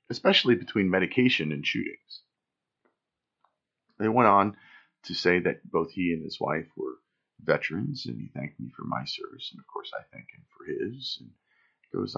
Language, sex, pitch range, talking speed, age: English, male, 90-145 Hz, 175 wpm, 40-59